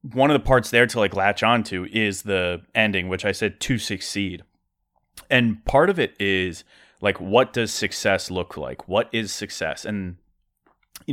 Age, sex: 30-49, male